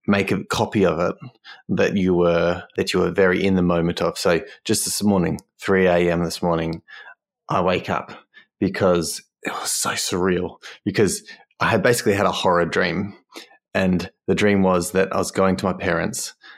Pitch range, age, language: 85-100 Hz, 20-39, English